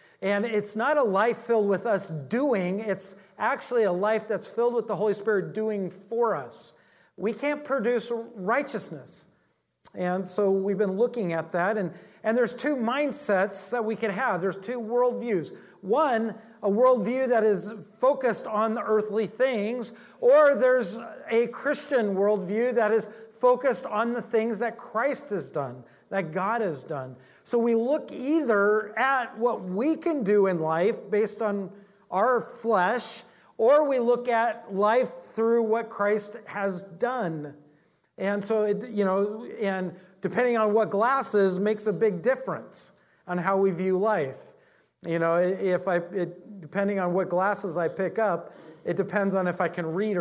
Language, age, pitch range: English, 40-59, 190-235 Hz